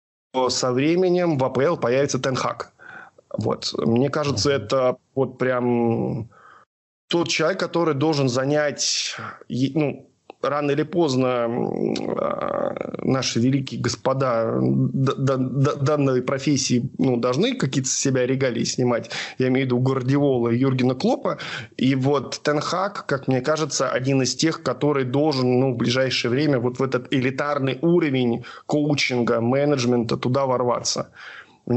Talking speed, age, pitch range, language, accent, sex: 125 wpm, 20-39, 120-145 Hz, Russian, native, male